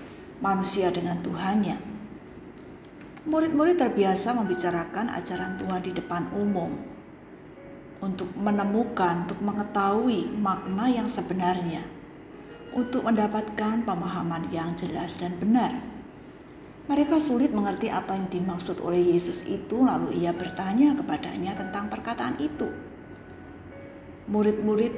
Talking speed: 100 wpm